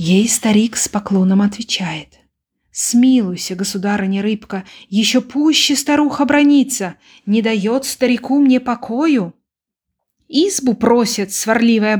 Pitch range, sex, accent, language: 195-255 Hz, female, native, Ukrainian